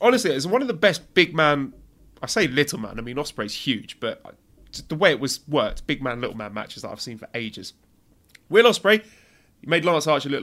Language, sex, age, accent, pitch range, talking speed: English, male, 30-49, British, 120-175 Hz, 235 wpm